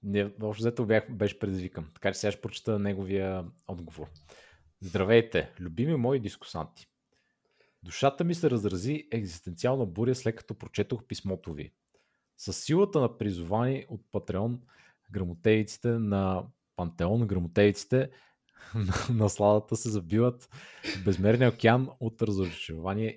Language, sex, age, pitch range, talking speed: Bulgarian, male, 30-49, 95-120 Hz, 120 wpm